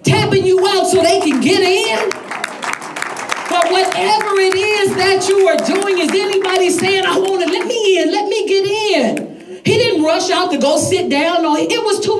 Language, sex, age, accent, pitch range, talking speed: English, female, 40-59, American, 265-370 Hz, 195 wpm